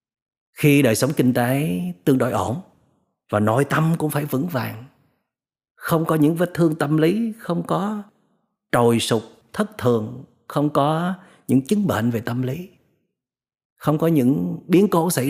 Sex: male